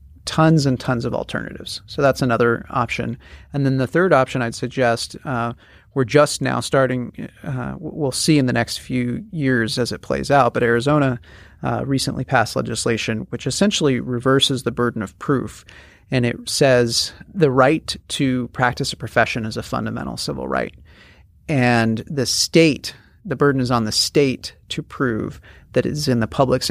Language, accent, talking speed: English, American, 170 wpm